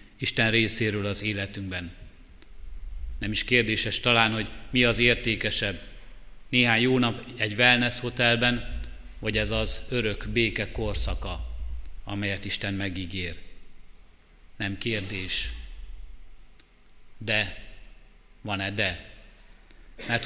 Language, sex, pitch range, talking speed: Hungarian, male, 95-120 Hz, 100 wpm